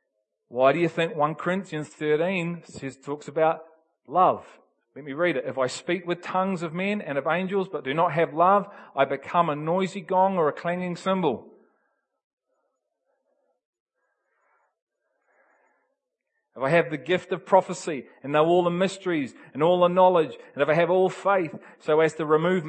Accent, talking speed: Australian, 170 wpm